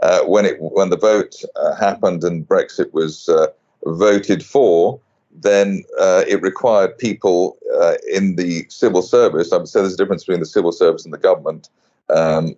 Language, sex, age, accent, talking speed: English, male, 40-59, British, 180 wpm